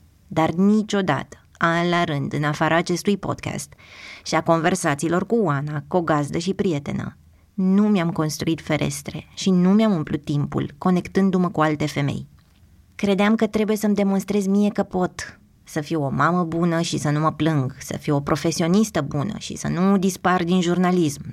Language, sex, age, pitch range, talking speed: Romanian, female, 20-39, 155-200 Hz, 170 wpm